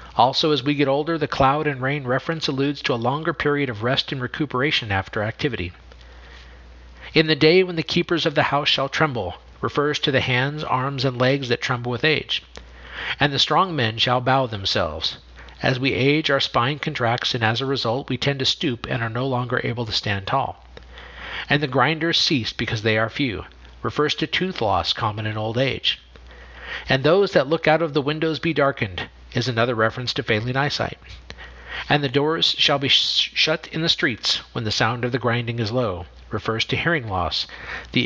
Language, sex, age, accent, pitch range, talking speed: English, male, 50-69, American, 110-145 Hz, 200 wpm